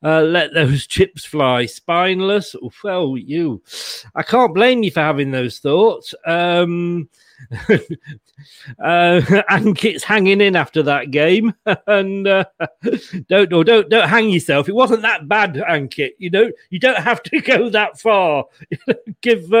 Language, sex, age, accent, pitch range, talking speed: English, male, 40-59, British, 155-210 Hz, 145 wpm